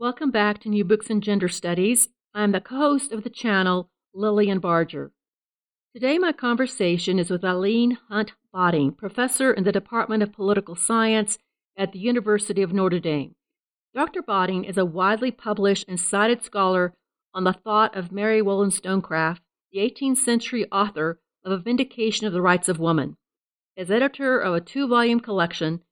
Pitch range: 185-235 Hz